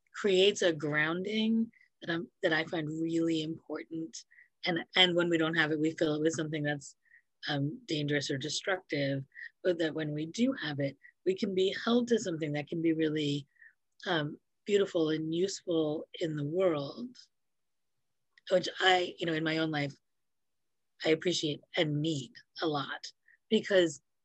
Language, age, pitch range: English, 30-49, 150-185 Hz